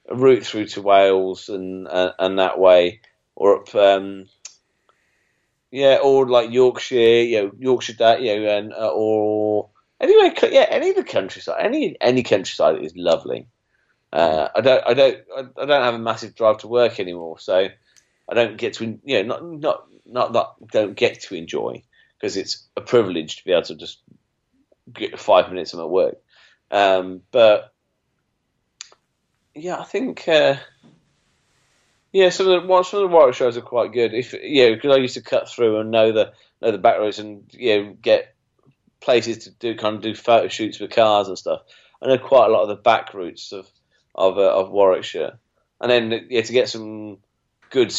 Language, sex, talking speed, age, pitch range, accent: English, male, 195 wpm, 30-49, 100-140 Hz, British